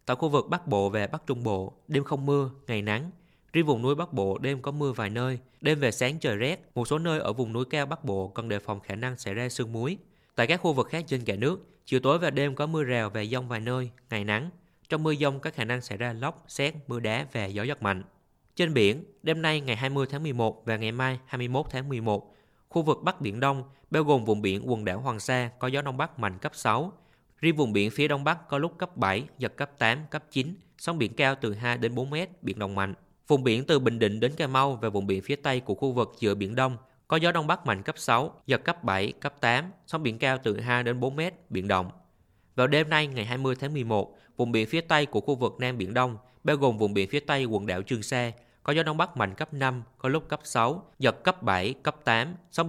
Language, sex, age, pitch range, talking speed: Vietnamese, male, 20-39, 110-150 Hz, 260 wpm